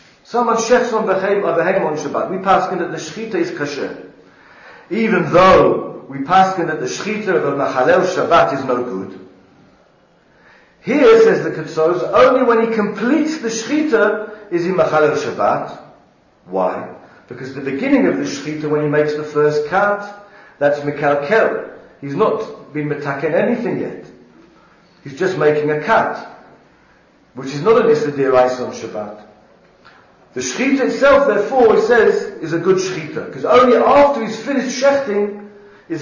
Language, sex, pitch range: English, male, 145-220 Hz